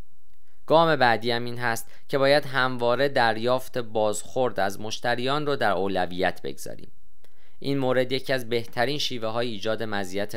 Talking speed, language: 140 wpm, Persian